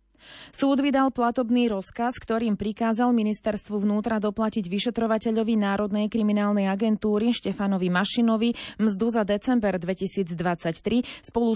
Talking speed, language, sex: 105 wpm, Slovak, female